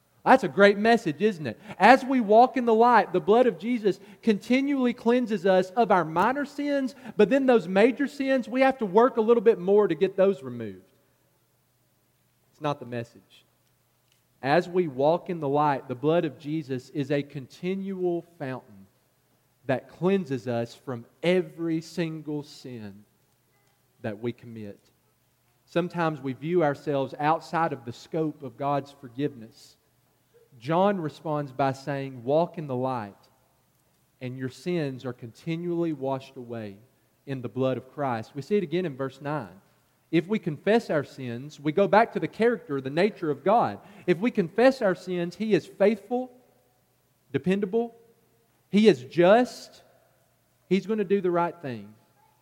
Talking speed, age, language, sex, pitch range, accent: 160 wpm, 40-59, English, male, 130-200 Hz, American